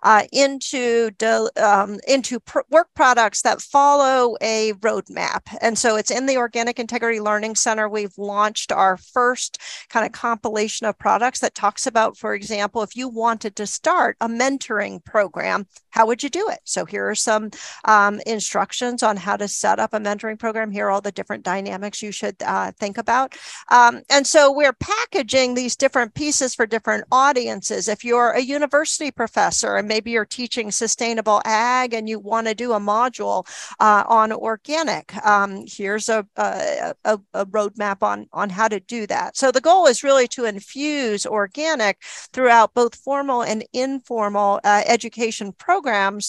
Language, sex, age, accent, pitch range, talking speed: English, female, 50-69, American, 205-245 Hz, 170 wpm